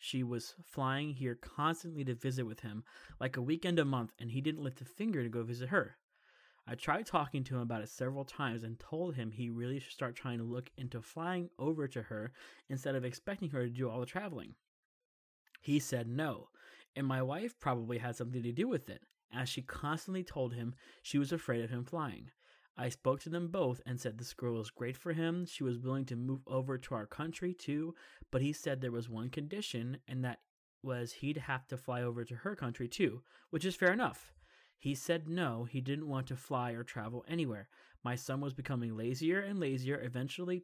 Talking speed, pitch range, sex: 215 wpm, 120-155 Hz, male